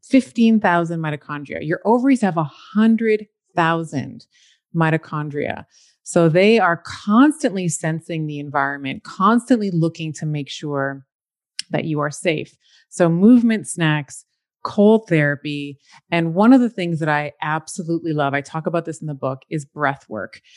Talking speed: 145 wpm